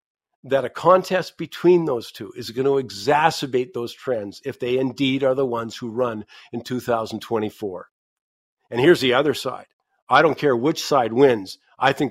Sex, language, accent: male, English, American